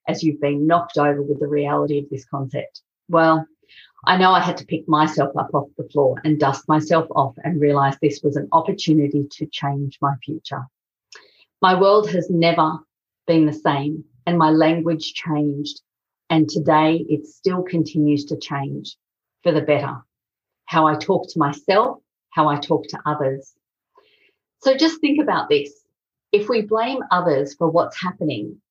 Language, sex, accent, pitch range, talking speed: English, female, Australian, 145-175 Hz, 165 wpm